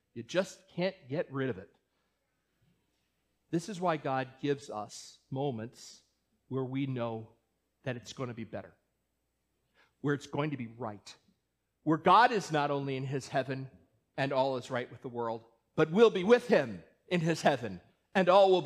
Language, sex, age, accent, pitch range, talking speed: English, male, 40-59, American, 130-180 Hz, 175 wpm